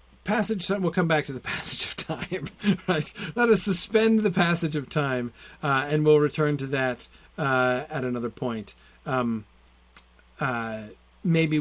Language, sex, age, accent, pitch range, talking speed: English, male, 40-59, American, 125-180 Hz, 160 wpm